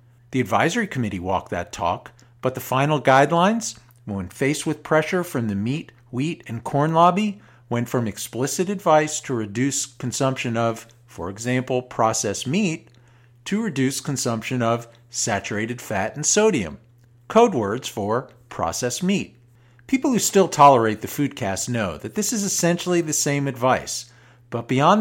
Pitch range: 120-160 Hz